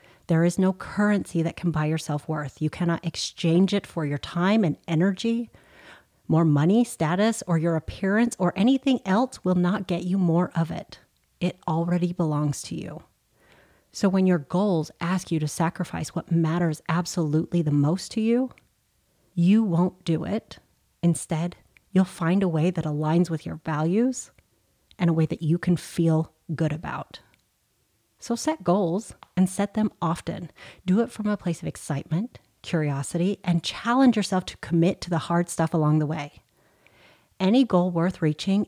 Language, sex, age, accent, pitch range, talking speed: English, female, 30-49, American, 160-195 Hz, 170 wpm